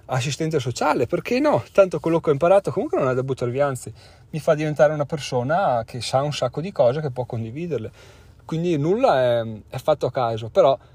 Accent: native